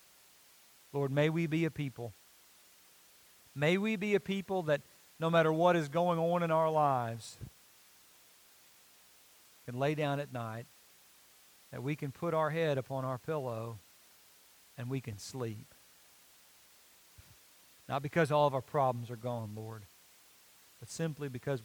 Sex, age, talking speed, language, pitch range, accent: male, 40-59, 140 wpm, English, 115-155 Hz, American